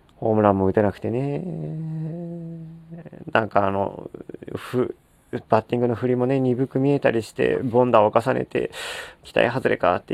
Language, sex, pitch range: Japanese, male, 105-135 Hz